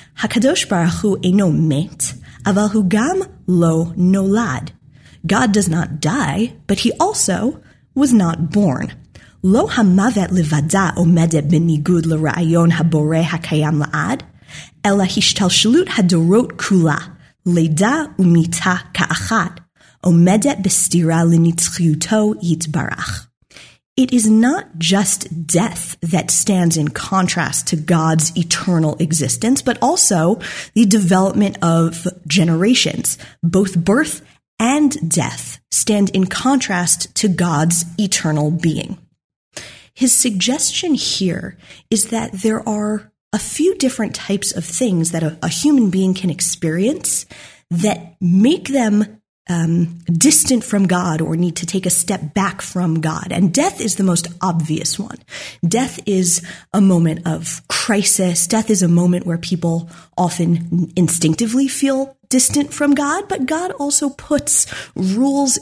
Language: English